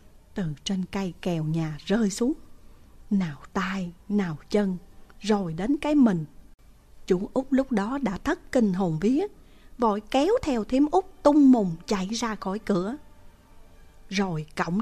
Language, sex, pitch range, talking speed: English, female, 170-220 Hz, 150 wpm